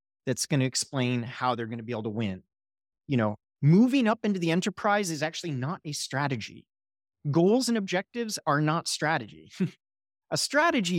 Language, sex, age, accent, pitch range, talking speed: English, male, 30-49, American, 125-165 Hz, 175 wpm